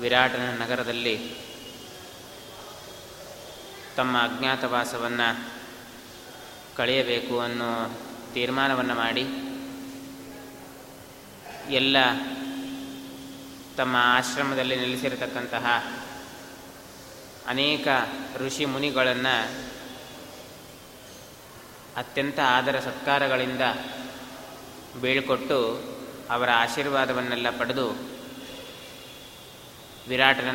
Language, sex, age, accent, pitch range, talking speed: Kannada, male, 20-39, native, 125-140 Hz, 45 wpm